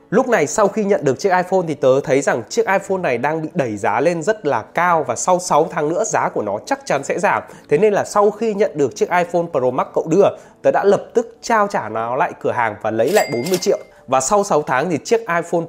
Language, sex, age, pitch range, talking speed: Vietnamese, male, 20-39, 140-205 Hz, 270 wpm